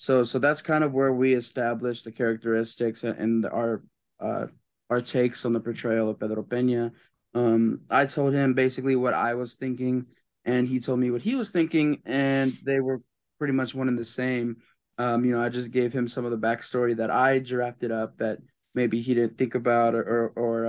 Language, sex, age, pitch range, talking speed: English, male, 20-39, 115-130 Hz, 210 wpm